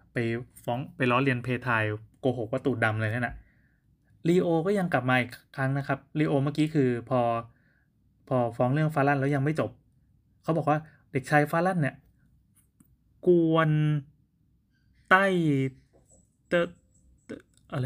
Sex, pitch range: male, 125-155 Hz